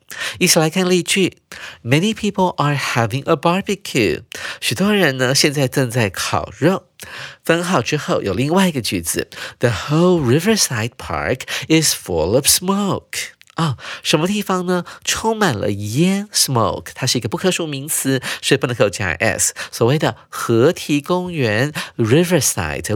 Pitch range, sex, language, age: 120-180 Hz, male, Chinese, 50-69